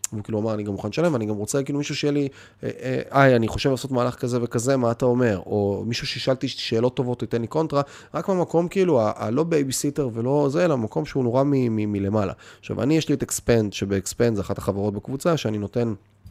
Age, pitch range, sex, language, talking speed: 30-49, 100-135 Hz, male, Hebrew, 225 wpm